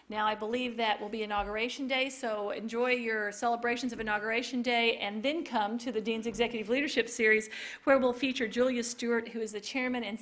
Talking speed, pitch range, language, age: 200 wpm, 210-245 Hz, English, 40-59